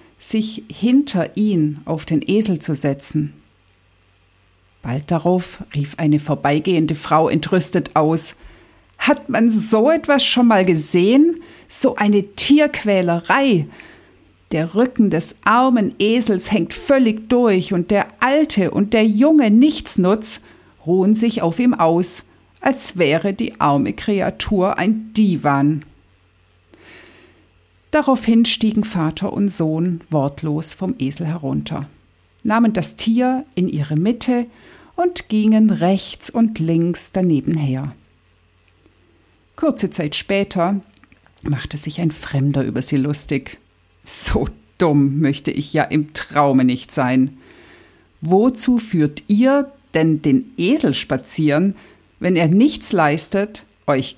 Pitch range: 145-220 Hz